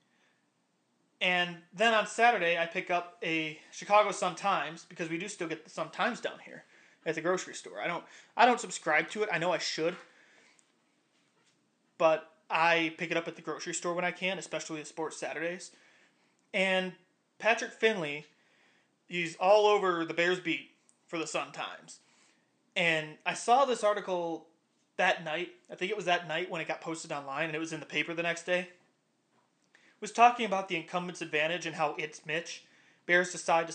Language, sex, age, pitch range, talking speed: English, male, 20-39, 160-195 Hz, 180 wpm